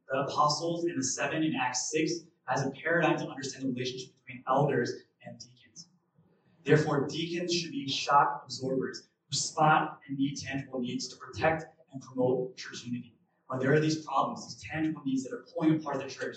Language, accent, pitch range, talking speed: English, American, 135-165 Hz, 190 wpm